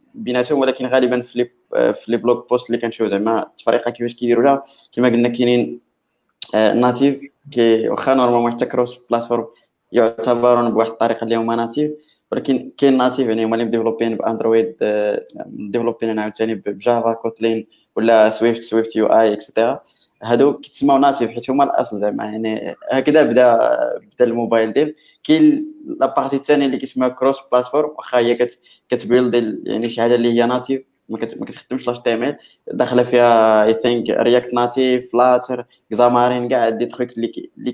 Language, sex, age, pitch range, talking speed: Arabic, male, 20-39, 115-130 Hz, 150 wpm